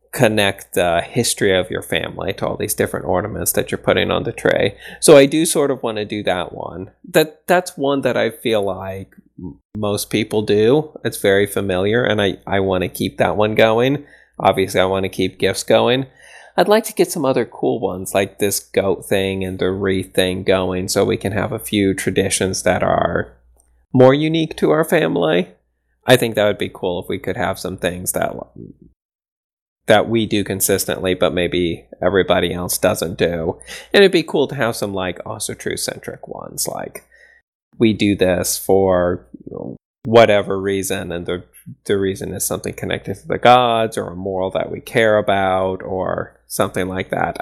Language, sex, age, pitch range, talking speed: English, male, 20-39, 95-120 Hz, 190 wpm